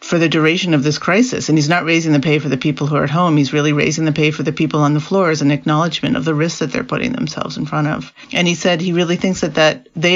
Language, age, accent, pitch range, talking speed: English, 40-59, American, 145-170 Hz, 300 wpm